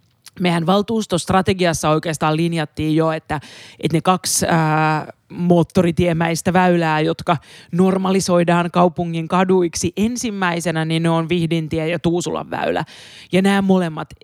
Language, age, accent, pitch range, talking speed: Finnish, 30-49, native, 160-195 Hz, 115 wpm